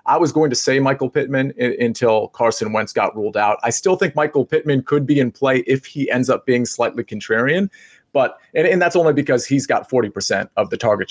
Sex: male